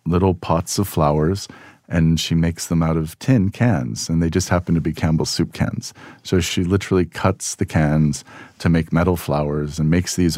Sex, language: male, English